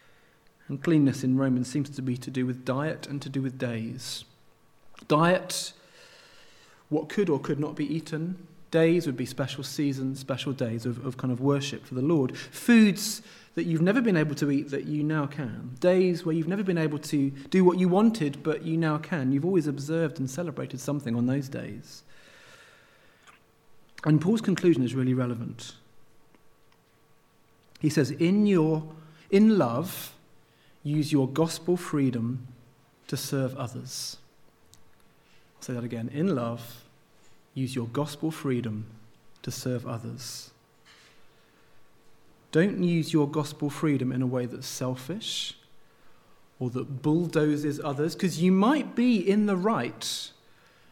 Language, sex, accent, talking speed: English, male, British, 150 wpm